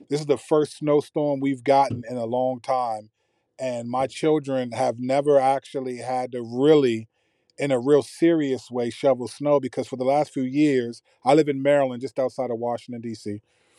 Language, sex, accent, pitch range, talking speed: English, male, American, 125-150 Hz, 185 wpm